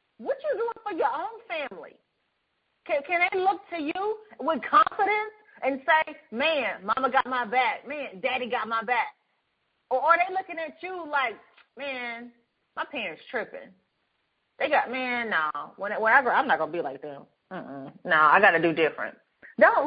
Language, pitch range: English, 250-325 Hz